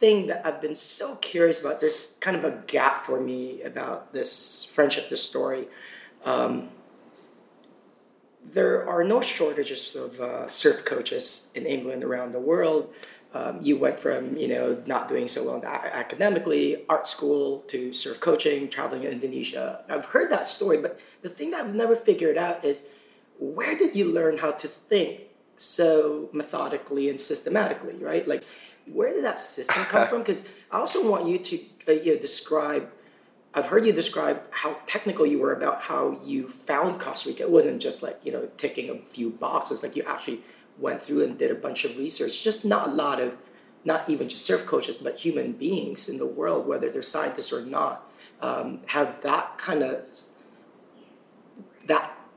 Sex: male